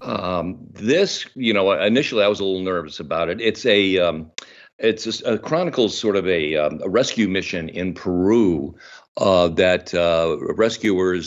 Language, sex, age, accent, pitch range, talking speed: English, male, 50-69, American, 85-105 Hz, 170 wpm